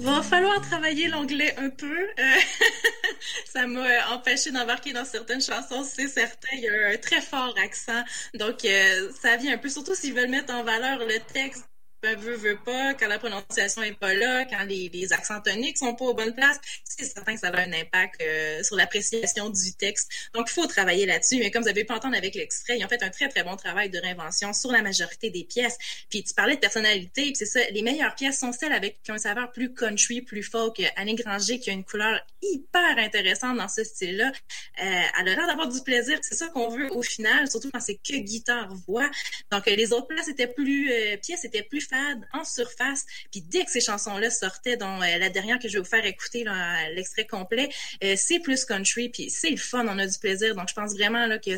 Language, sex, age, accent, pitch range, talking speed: French, female, 20-39, Canadian, 205-270 Hz, 225 wpm